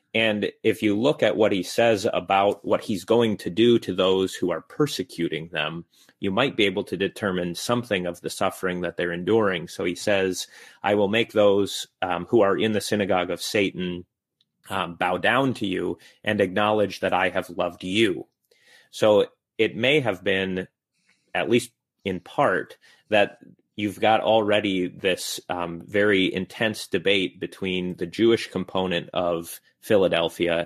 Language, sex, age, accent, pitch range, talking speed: English, male, 30-49, American, 90-115 Hz, 165 wpm